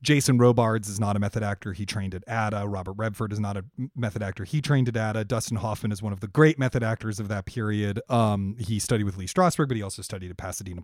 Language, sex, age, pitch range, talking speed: English, male, 30-49, 105-145 Hz, 255 wpm